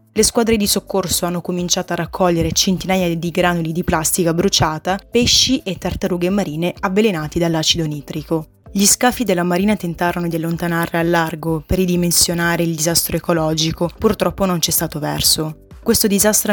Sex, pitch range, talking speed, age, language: female, 165-195 Hz, 155 wpm, 20-39, Italian